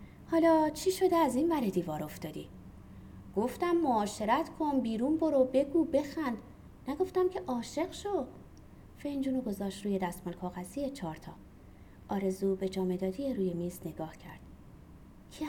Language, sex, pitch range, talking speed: Persian, female, 180-280 Hz, 130 wpm